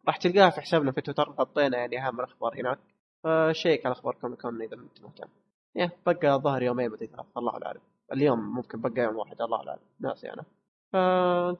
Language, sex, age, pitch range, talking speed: Arabic, male, 20-39, 125-150 Hz, 185 wpm